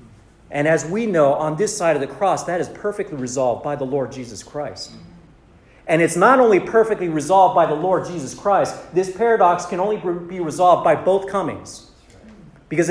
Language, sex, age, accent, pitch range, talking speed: English, male, 40-59, American, 135-185 Hz, 185 wpm